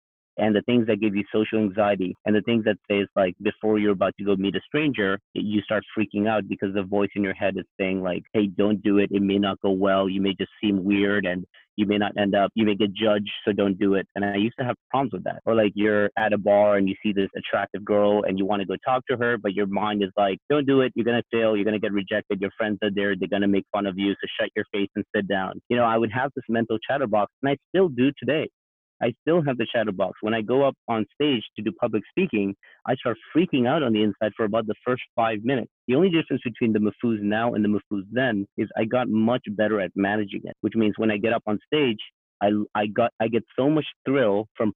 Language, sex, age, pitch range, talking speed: English, male, 30-49, 100-115 Hz, 270 wpm